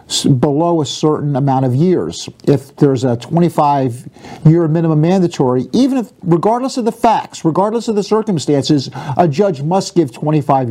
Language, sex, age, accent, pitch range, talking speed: English, male, 50-69, American, 135-175 Hz, 155 wpm